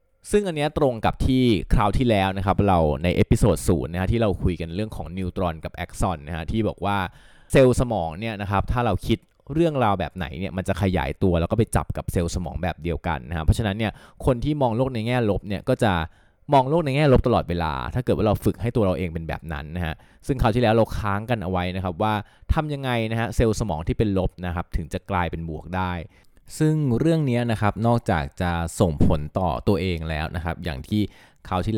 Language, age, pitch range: Thai, 20-39, 85-110 Hz